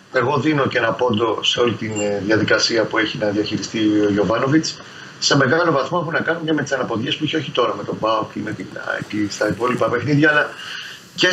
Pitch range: 120-160 Hz